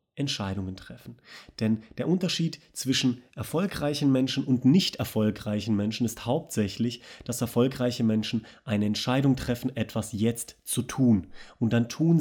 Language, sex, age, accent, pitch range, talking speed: German, male, 30-49, German, 100-130 Hz, 135 wpm